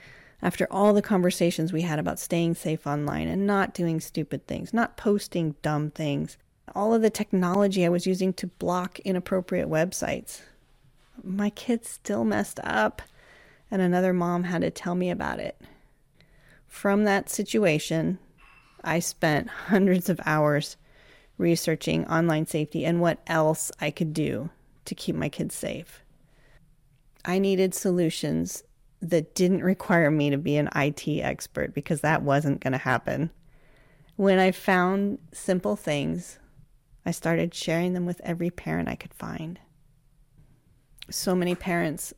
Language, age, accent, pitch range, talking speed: English, 30-49, American, 150-185 Hz, 145 wpm